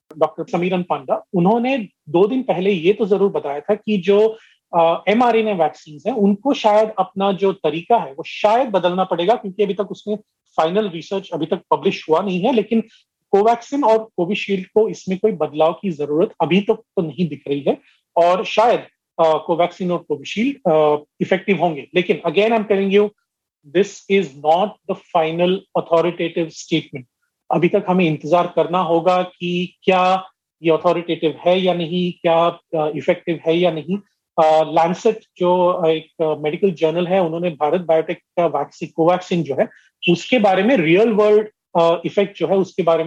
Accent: native